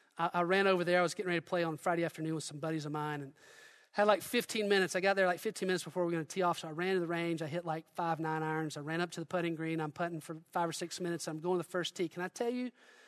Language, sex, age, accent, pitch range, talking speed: English, male, 40-59, American, 160-250 Hz, 325 wpm